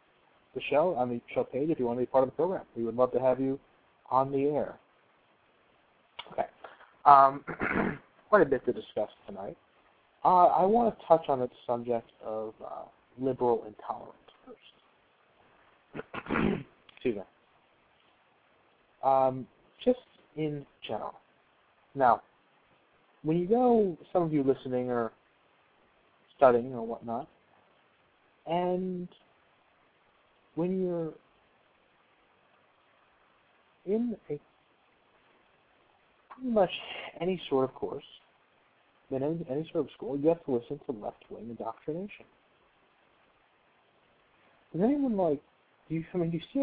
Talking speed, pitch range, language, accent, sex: 125 wpm, 130-180 Hz, English, American, male